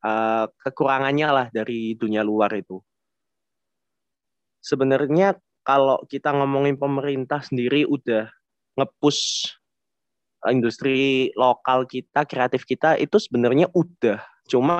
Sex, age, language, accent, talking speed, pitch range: male, 20-39, Indonesian, native, 95 wpm, 120-145 Hz